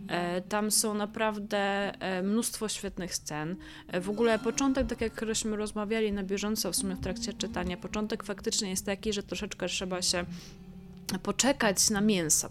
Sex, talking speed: female, 145 wpm